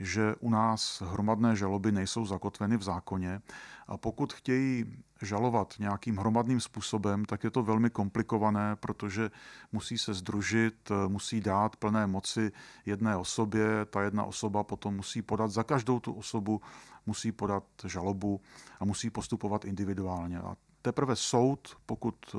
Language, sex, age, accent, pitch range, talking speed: Czech, male, 40-59, native, 100-120 Hz, 140 wpm